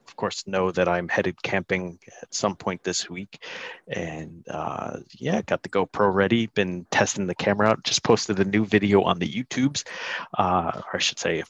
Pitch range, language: 100-135 Hz, English